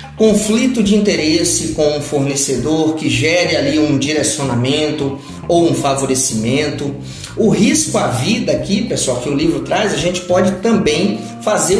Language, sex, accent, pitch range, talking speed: Portuguese, male, Brazilian, 145-200 Hz, 150 wpm